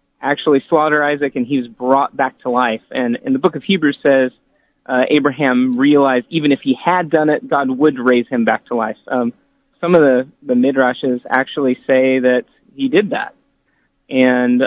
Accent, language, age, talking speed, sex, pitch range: American, English, 30-49, 190 wpm, male, 125-165 Hz